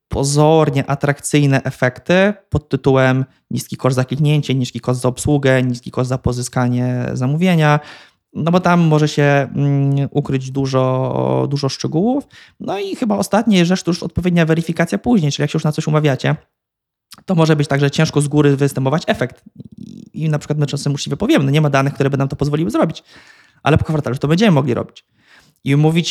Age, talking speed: 20-39, 180 wpm